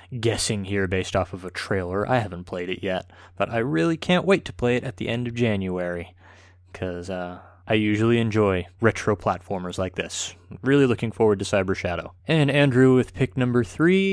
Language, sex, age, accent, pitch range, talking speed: English, male, 20-39, American, 90-125 Hz, 195 wpm